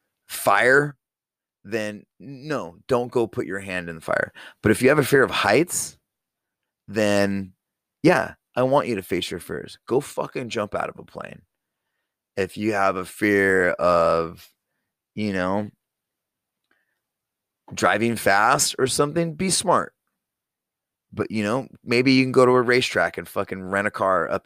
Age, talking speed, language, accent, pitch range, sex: 30-49, 160 wpm, English, American, 100-130 Hz, male